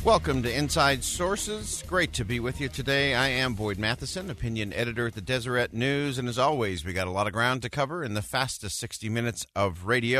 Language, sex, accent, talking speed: English, male, American, 225 wpm